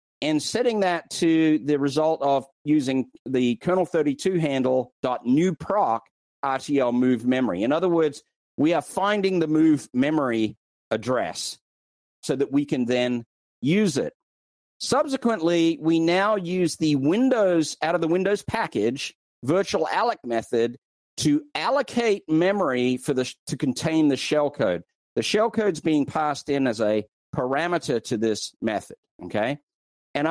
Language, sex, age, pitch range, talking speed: English, male, 40-59, 125-170 Hz, 140 wpm